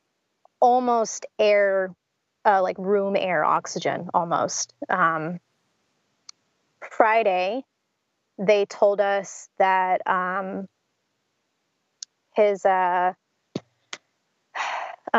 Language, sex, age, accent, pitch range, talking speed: English, female, 20-39, American, 185-230 Hz, 65 wpm